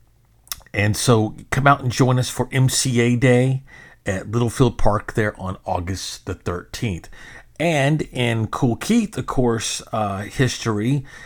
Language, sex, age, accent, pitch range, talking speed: English, male, 40-59, American, 100-125 Hz, 140 wpm